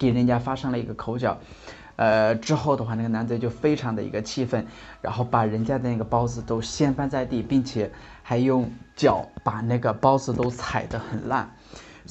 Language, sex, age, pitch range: Chinese, male, 20-39, 115-155 Hz